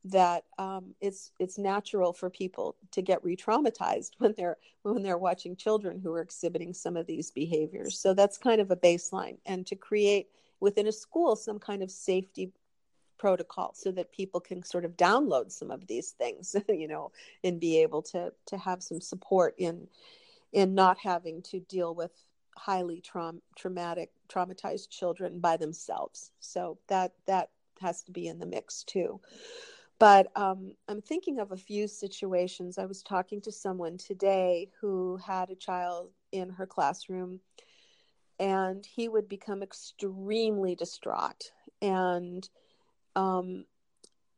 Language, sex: English, female